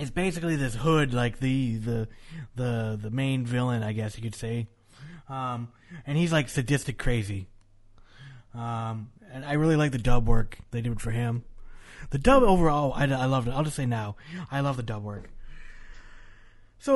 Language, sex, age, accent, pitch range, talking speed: English, male, 20-39, American, 115-155 Hz, 185 wpm